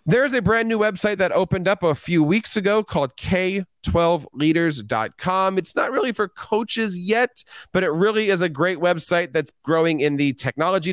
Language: English